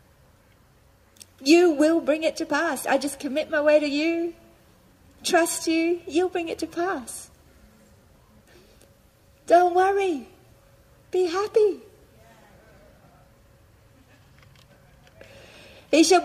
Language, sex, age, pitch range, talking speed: English, female, 40-59, 215-305 Hz, 95 wpm